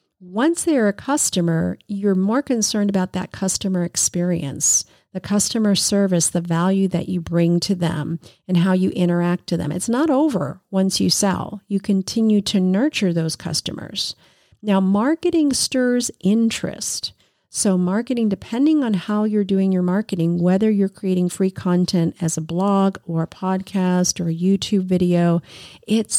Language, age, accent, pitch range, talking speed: English, 40-59, American, 175-215 Hz, 155 wpm